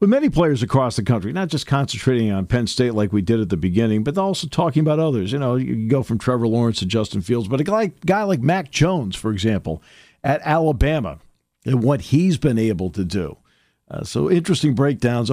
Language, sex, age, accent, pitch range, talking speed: English, male, 50-69, American, 105-145 Hz, 215 wpm